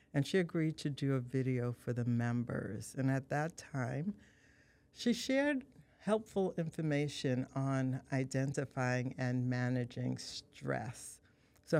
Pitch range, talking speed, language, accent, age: 130-150 Hz, 120 wpm, English, American, 60-79